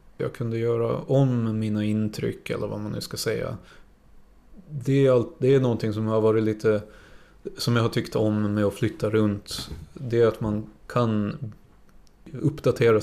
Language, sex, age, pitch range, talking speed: Swedish, male, 30-49, 105-120 Hz, 175 wpm